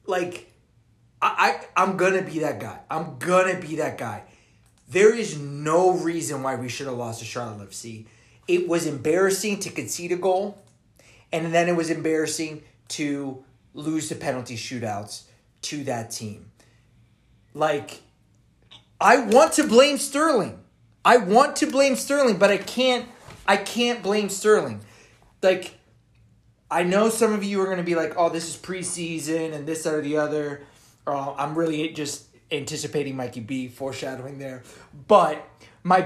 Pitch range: 135-215 Hz